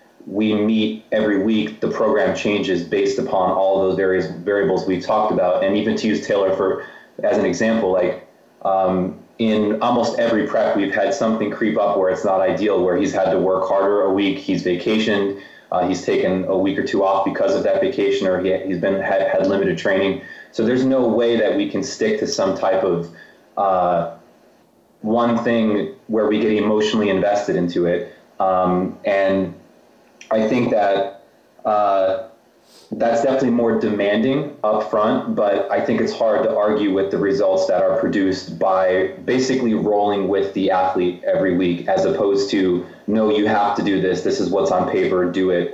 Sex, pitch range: male, 95-115 Hz